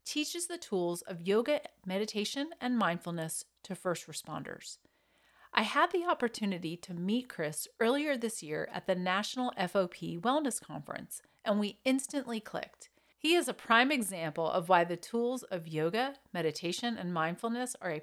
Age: 40-59